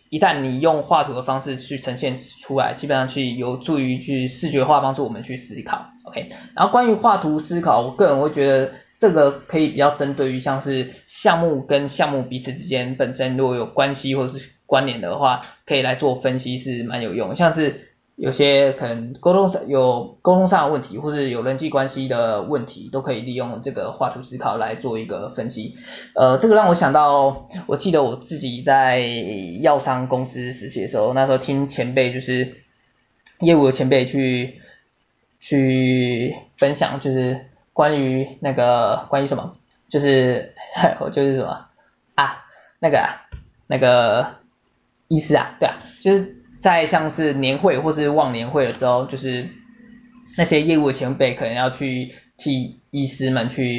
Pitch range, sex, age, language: 130-150 Hz, male, 20-39, Chinese